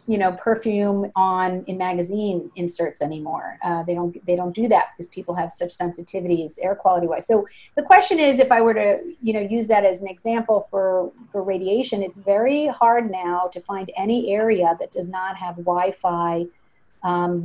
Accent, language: American, English